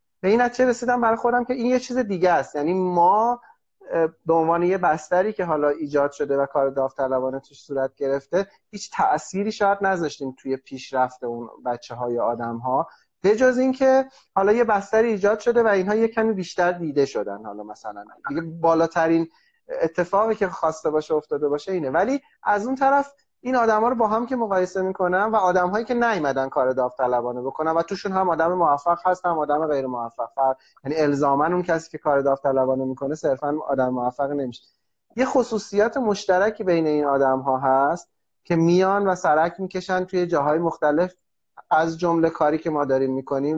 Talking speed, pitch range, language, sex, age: 180 wpm, 140-200 Hz, Persian, male, 30-49